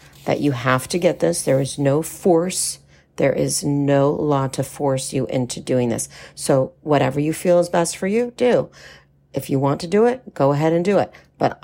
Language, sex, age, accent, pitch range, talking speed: English, female, 40-59, American, 135-170 Hz, 210 wpm